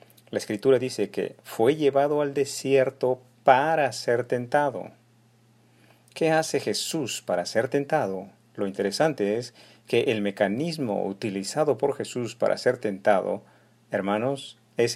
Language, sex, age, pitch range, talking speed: Spanish, male, 50-69, 105-135 Hz, 125 wpm